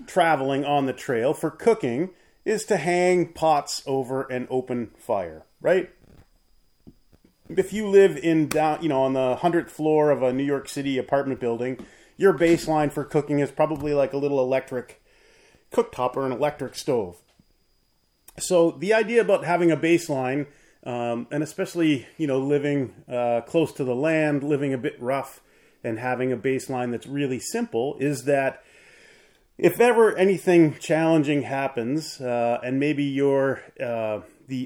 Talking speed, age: 155 wpm, 30-49